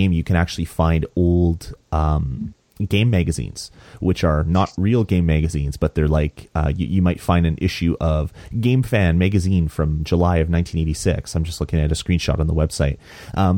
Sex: male